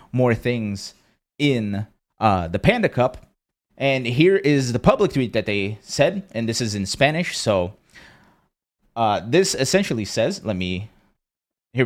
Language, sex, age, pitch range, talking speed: English, male, 30-49, 115-145 Hz, 145 wpm